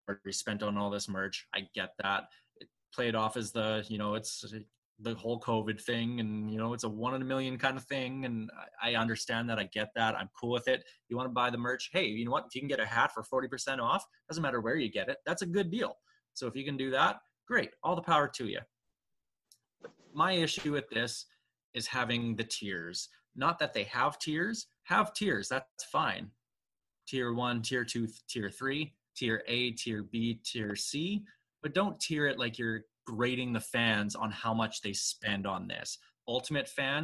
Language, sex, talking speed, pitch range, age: English, male, 215 wpm, 110-130 Hz, 20-39